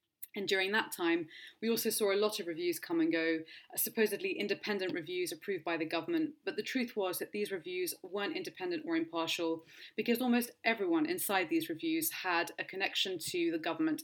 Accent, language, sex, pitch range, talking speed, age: British, English, female, 170-235 Hz, 190 wpm, 30-49